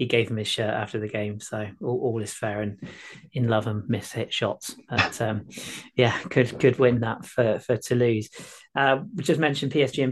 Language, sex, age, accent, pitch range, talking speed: English, male, 30-49, British, 120-135 Hz, 220 wpm